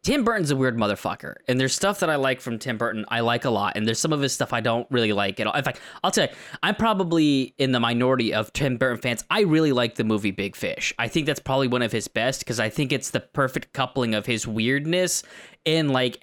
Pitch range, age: 115-170 Hz, 20-39